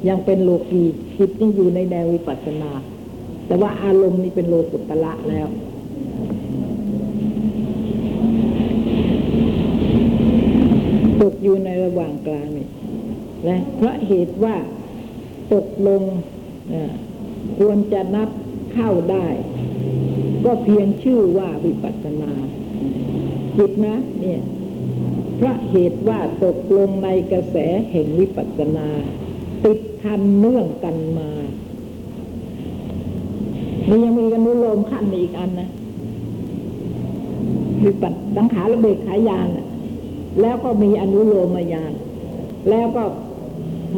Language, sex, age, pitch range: Thai, female, 60-79, 175-215 Hz